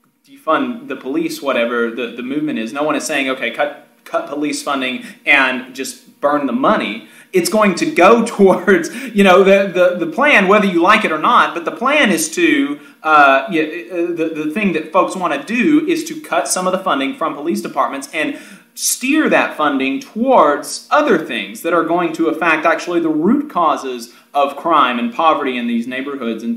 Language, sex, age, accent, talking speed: English, male, 30-49, American, 195 wpm